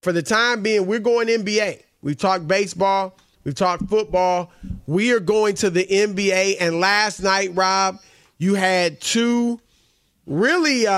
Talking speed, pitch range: 150 wpm, 180-215 Hz